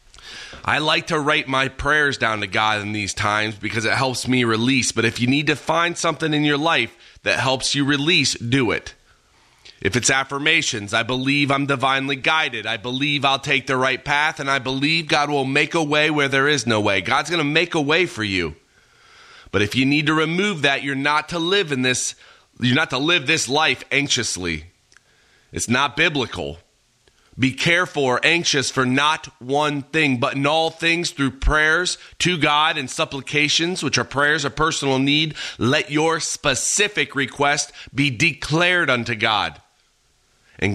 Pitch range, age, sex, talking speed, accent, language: 125-155 Hz, 30-49, male, 185 wpm, American, English